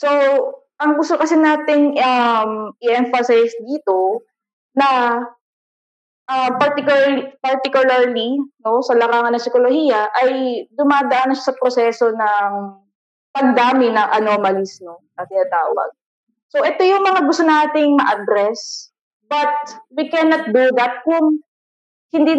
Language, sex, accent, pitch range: Filipino, female, native, 220-280 Hz